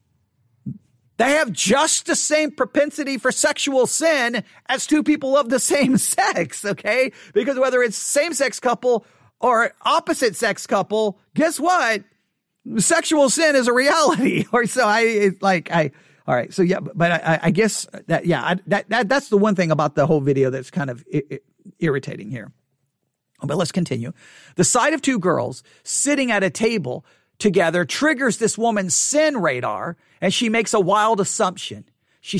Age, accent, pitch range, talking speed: 40-59, American, 160-230 Hz, 165 wpm